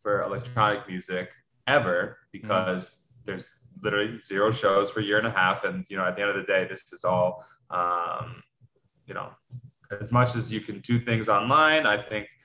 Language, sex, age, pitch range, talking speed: English, male, 20-39, 90-115 Hz, 195 wpm